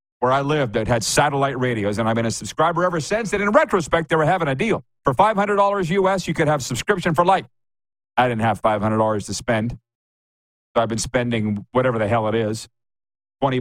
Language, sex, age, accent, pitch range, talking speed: English, male, 40-59, American, 115-155 Hz, 205 wpm